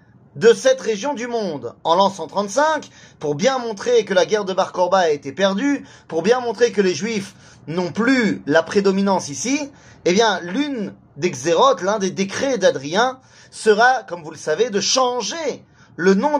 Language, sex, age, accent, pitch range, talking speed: French, male, 30-49, French, 180-245 Hz, 175 wpm